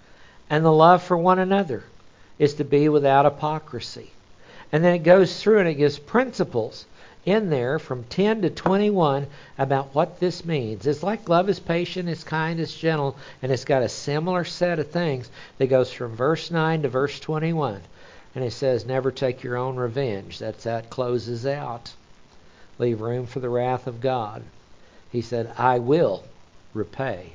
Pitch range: 120-155 Hz